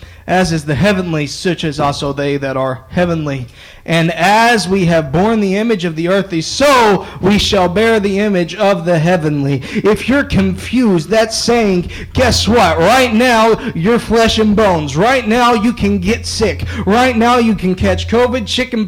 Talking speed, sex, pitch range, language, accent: 180 wpm, male, 185-265 Hz, English, American